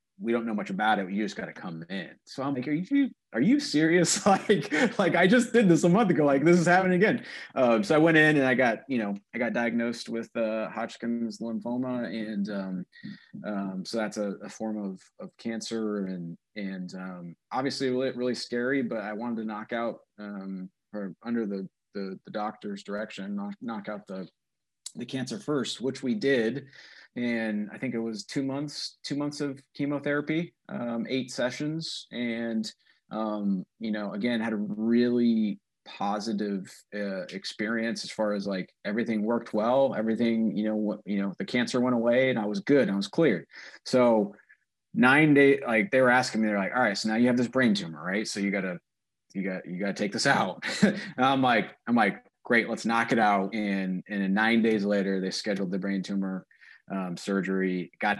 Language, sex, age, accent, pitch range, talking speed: English, male, 30-49, American, 100-125 Hz, 205 wpm